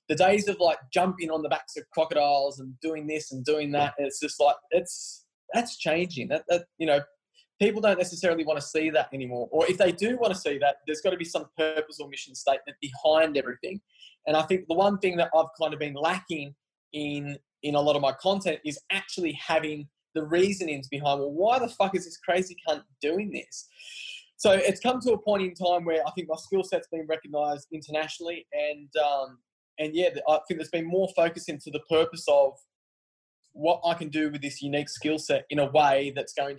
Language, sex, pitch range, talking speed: English, male, 145-175 Hz, 220 wpm